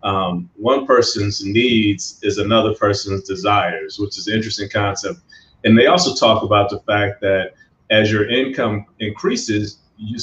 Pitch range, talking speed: 95-110 Hz, 155 wpm